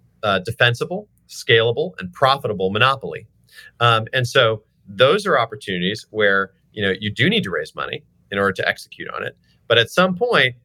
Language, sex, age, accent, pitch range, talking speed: English, male, 40-59, American, 95-135 Hz, 175 wpm